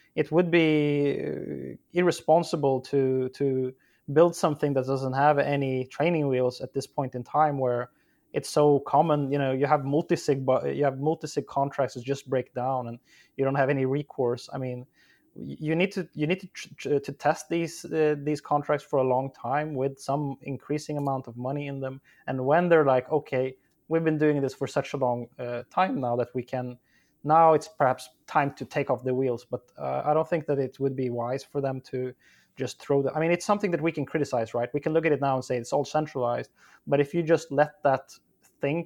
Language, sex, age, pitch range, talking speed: English, male, 20-39, 130-150 Hz, 220 wpm